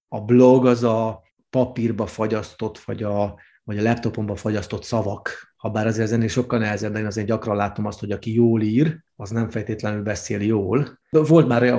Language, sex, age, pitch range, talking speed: Hungarian, male, 30-49, 110-130 Hz, 195 wpm